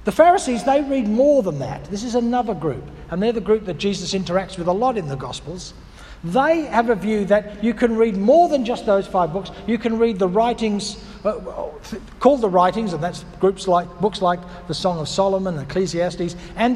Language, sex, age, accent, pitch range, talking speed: English, male, 60-79, Australian, 165-235 Hz, 210 wpm